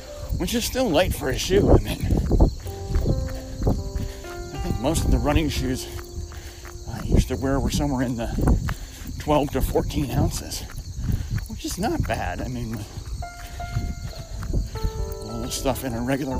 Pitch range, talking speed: 85-120 Hz, 145 wpm